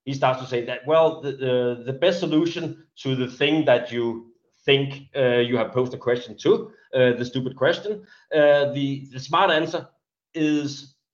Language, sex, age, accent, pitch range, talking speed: English, male, 30-49, Danish, 120-150 Hz, 185 wpm